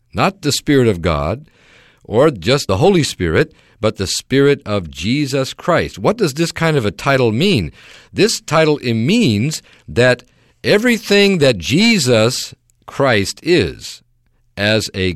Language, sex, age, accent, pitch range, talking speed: English, male, 50-69, American, 95-140 Hz, 140 wpm